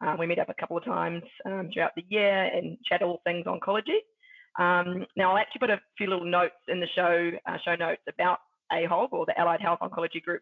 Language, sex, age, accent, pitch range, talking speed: English, female, 20-39, Australian, 175-230 Hz, 230 wpm